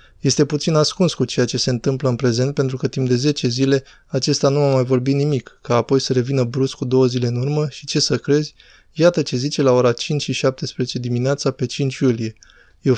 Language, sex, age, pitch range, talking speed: Romanian, male, 20-39, 125-145 Hz, 220 wpm